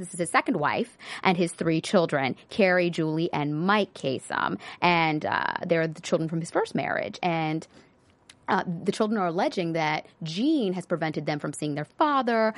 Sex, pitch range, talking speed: female, 155-185 Hz, 180 wpm